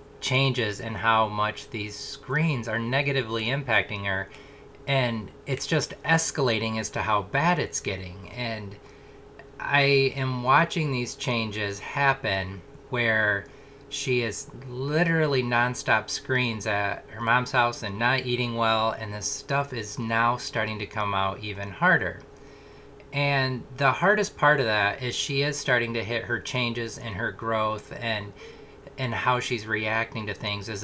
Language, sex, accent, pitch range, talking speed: English, male, American, 110-140 Hz, 150 wpm